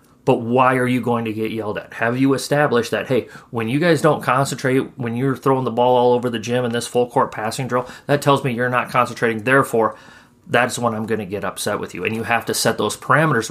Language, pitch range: English, 115-140 Hz